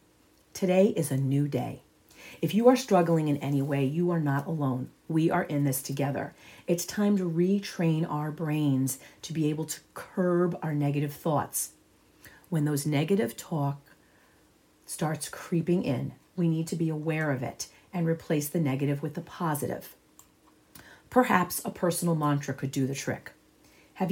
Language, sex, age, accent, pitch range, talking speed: English, female, 40-59, American, 150-190 Hz, 160 wpm